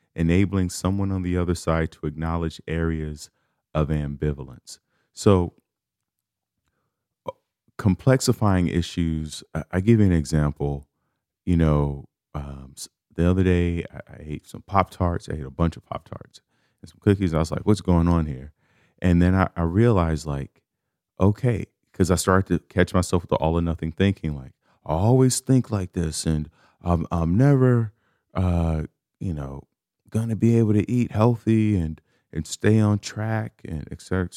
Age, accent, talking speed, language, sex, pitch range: 30-49, American, 165 wpm, English, male, 80-100 Hz